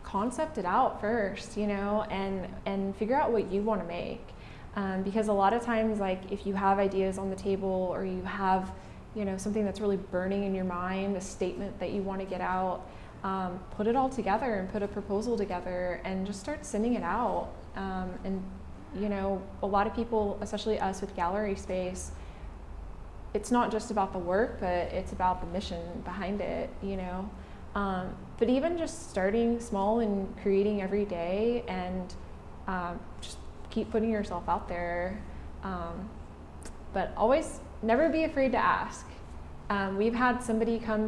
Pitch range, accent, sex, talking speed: 185-220 Hz, American, female, 180 wpm